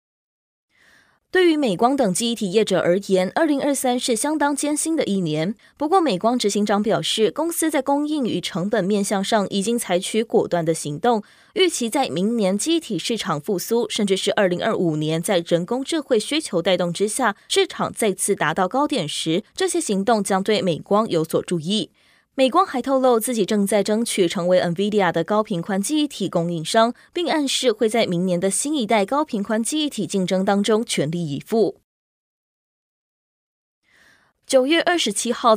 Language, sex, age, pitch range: Chinese, female, 20-39, 185-255 Hz